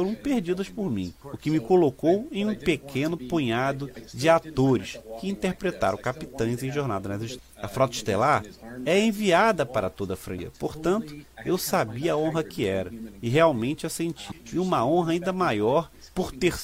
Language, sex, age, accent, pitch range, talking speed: Portuguese, male, 40-59, Brazilian, 115-170 Hz, 170 wpm